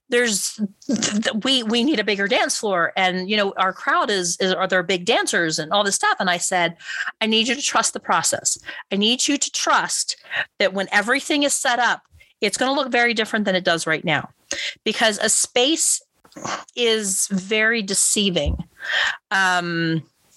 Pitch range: 180-235 Hz